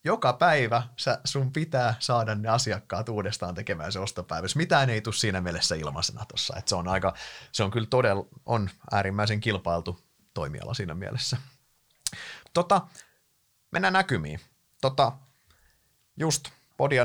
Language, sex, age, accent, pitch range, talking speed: Finnish, male, 30-49, native, 95-130 Hz, 120 wpm